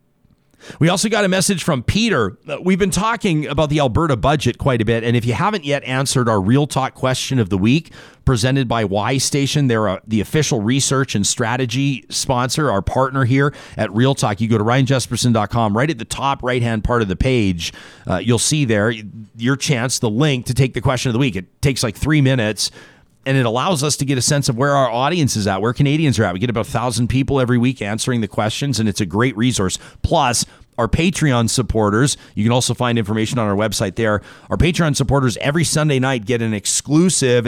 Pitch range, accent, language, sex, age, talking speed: 110-140 Hz, American, English, male, 40-59, 225 wpm